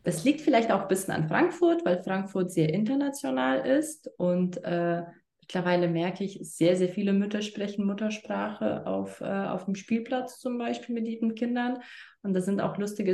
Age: 20-39